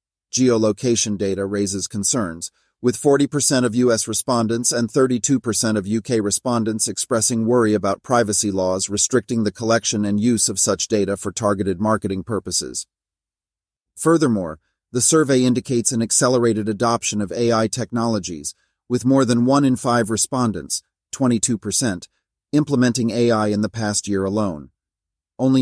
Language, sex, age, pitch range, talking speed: English, male, 40-59, 105-125 Hz, 135 wpm